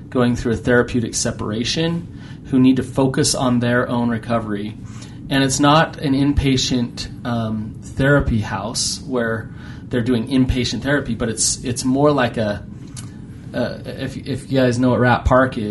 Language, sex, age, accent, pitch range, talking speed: English, male, 30-49, American, 115-135 Hz, 160 wpm